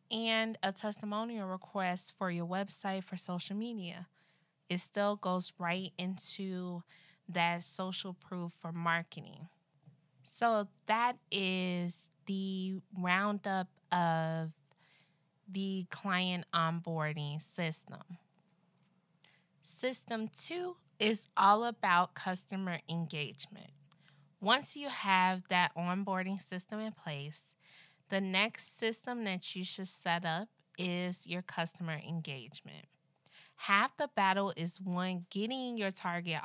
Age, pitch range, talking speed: 20-39, 170-200 Hz, 105 wpm